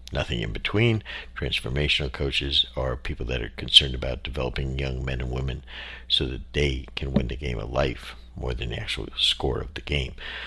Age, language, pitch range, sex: 60-79, English, 65-80 Hz, male